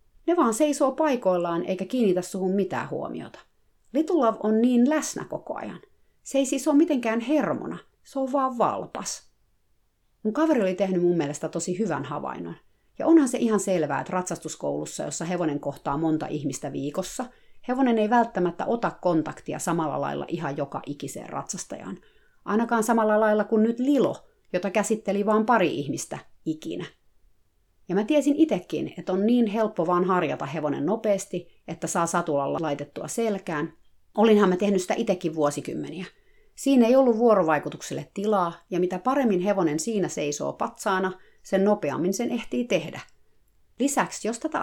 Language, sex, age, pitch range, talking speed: Finnish, female, 30-49, 170-250 Hz, 150 wpm